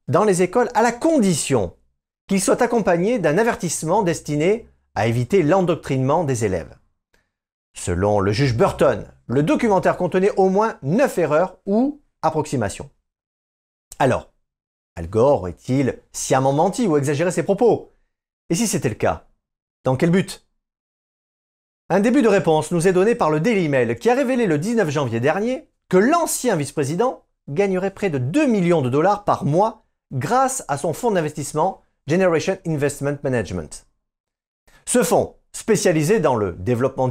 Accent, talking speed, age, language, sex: French, 150 wpm, 40-59, French, male